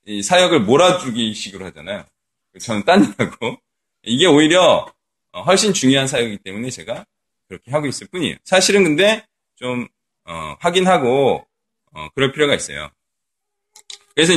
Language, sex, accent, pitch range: Korean, male, native, 125-195 Hz